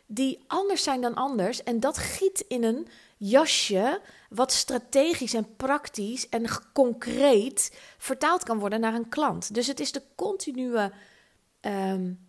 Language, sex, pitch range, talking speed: Dutch, female, 215-275 Hz, 140 wpm